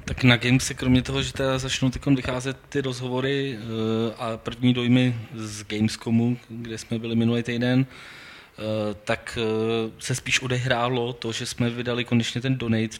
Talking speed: 150 wpm